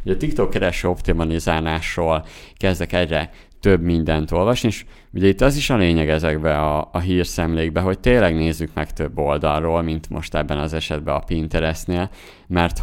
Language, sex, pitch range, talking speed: Hungarian, male, 80-90 Hz, 160 wpm